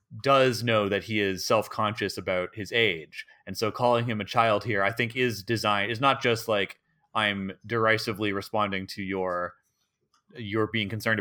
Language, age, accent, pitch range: English, 30-49, American, 95-120 Hz